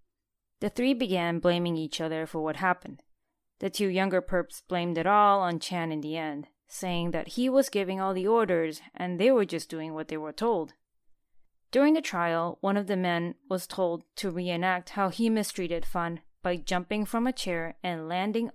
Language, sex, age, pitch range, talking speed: English, female, 20-39, 160-210 Hz, 195 wpm